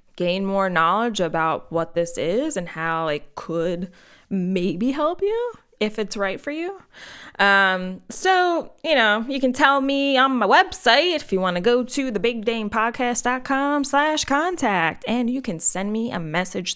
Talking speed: 170 wpm